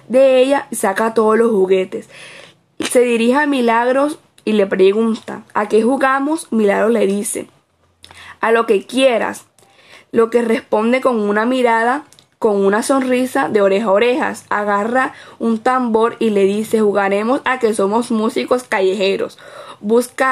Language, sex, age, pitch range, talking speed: Spanish, female, 10-29, 205-250 Hz, 145 wpm